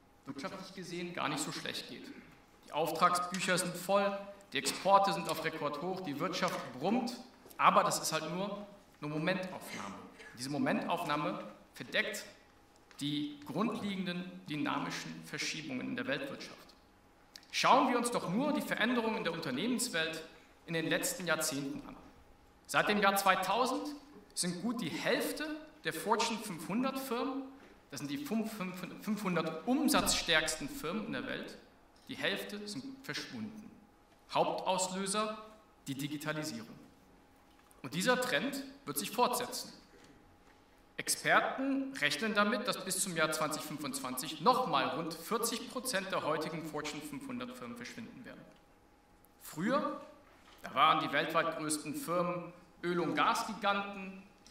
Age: 50-69